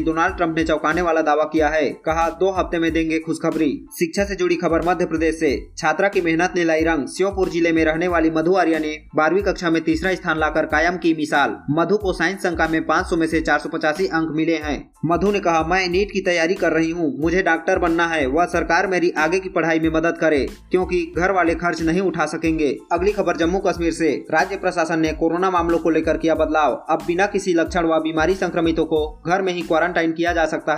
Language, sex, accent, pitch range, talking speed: Hindi, male, native, 160-180 Hz, 230 wpm